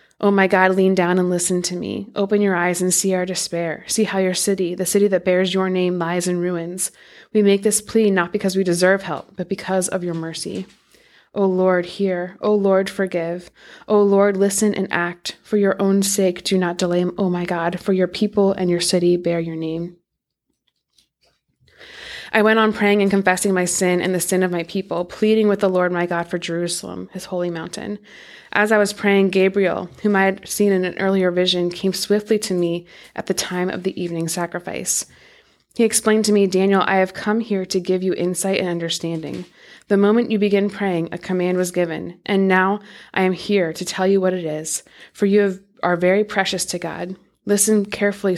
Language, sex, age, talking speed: English, female, 20-39, 205 wpm